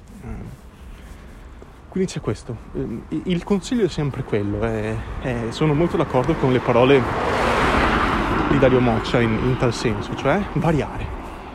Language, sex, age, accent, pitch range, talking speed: Italian, male, 20-39, native, 110-140 Hz, 120 wpm